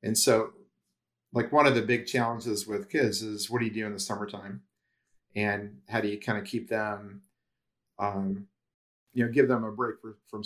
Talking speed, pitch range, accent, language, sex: 195 wpm, 105-120 Hz, American, English, male